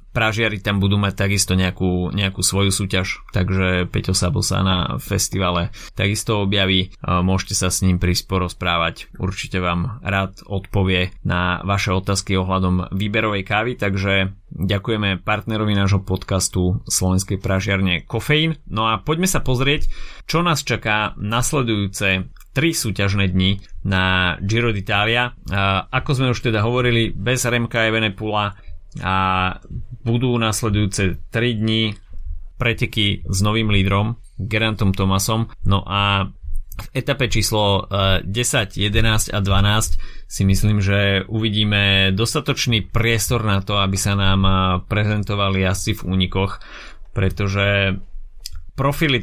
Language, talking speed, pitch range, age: Slovak, 125 wpm, 95-110 Hz, 20-39